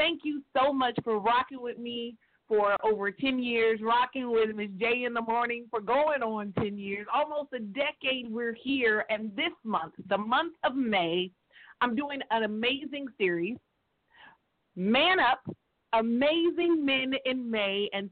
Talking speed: 160 wpm